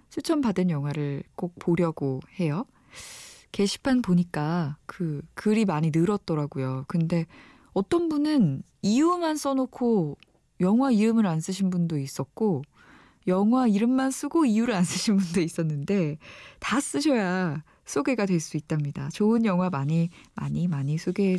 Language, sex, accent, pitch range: Korean, female, native, 165-225 Hz